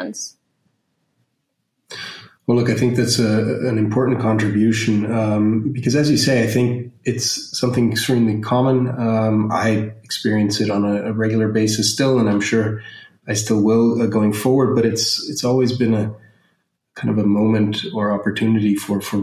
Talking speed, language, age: 165 wpm, English, 30-49